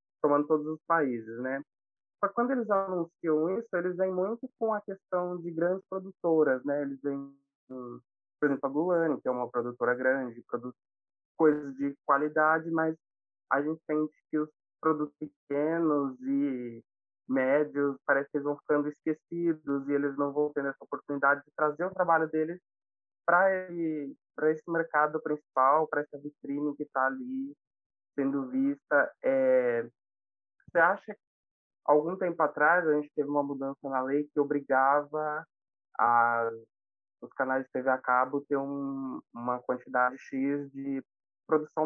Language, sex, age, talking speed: Portuguese, male, 20-39, 150 wpm